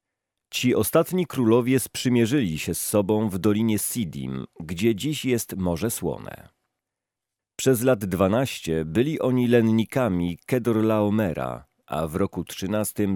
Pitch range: 95-120 Hz